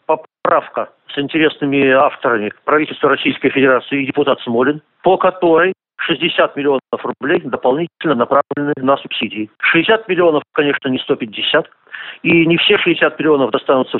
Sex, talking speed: male, 130 wpm